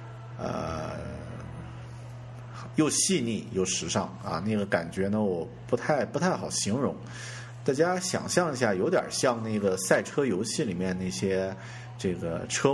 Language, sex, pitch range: Chinese, male, 90-120 Hz